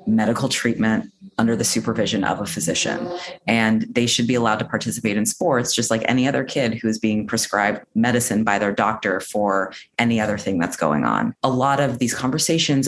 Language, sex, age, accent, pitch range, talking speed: English, female, 30-49, American, 110-130 Hz, 195 wpm